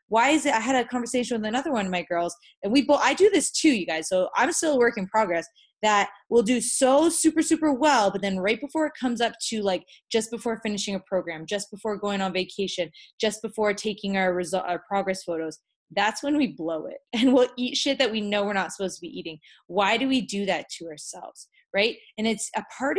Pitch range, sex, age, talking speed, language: 195-275 Hz, female, 20-39, 245 wpm, English